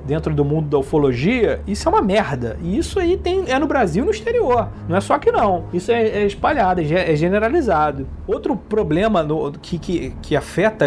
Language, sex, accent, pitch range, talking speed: Portuguese, male, Brazilian, 160-220 Hz, 210 wpm